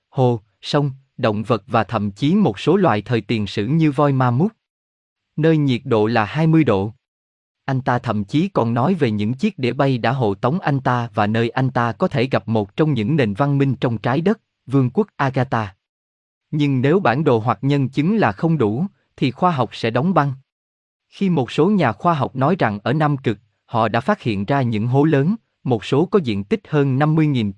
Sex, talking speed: male, 220 wpm